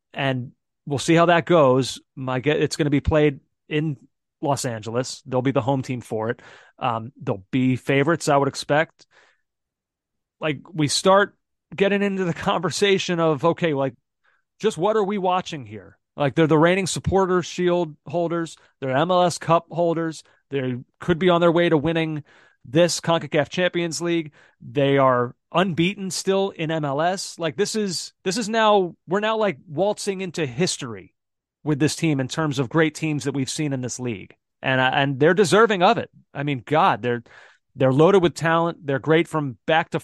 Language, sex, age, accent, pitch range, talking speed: English, male, 30-49, American, 135-175 Hz, 180 wpm